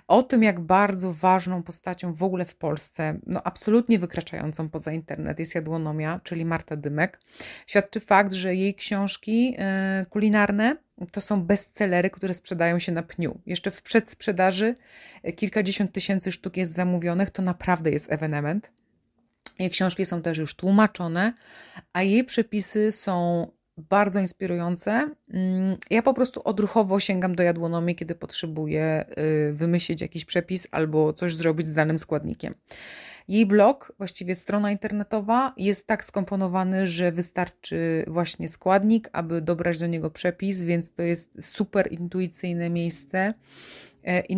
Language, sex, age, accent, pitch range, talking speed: Polish, female, 30-49, native, 170-205 Hz, 135 wpm